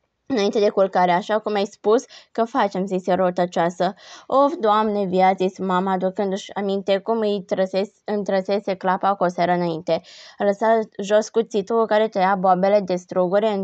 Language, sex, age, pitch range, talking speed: Romanian, female, 20-39, 185-225 Hz, 145 wpm